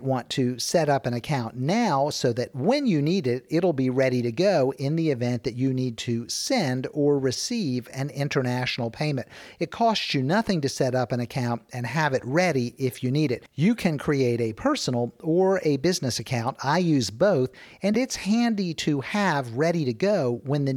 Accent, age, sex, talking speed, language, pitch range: American, 50-69, male, 200 wpm, English, 125-170 Hz